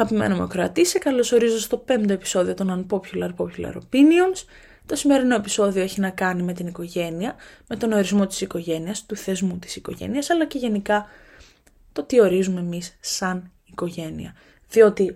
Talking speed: 160 wpm